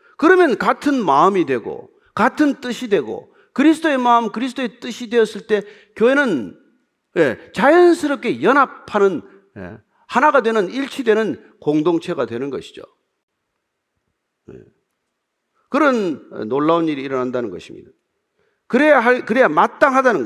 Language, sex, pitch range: Korean, male, 215-310 Hz